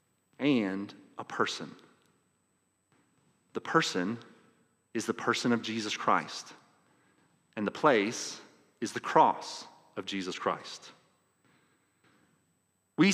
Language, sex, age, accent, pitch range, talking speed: English, male, 30-49, American, 160-215 Hz, 95 wpm